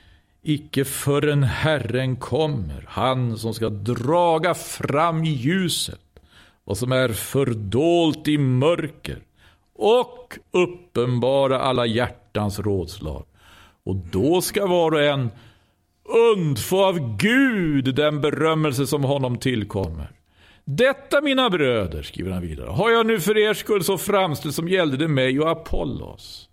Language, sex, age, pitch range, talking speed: Swedish, male, 50-69, 95-155 Hz, 125 wpm